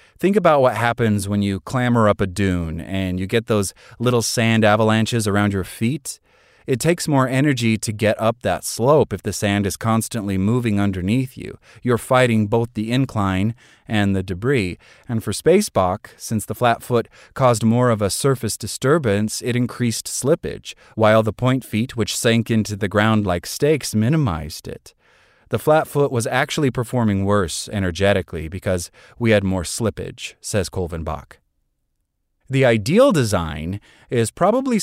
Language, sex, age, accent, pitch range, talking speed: English, male, 30-49, American, 100-125 Hz, 160 wpm